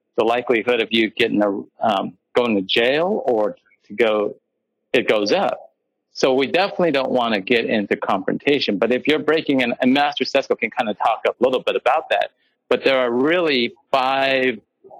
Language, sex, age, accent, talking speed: English, male, 50-69, American, 190 wpm